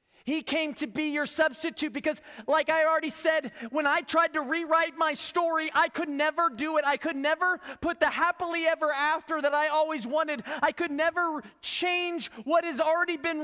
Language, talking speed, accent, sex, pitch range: English, 190 wpm, American, male, 290-330 Hz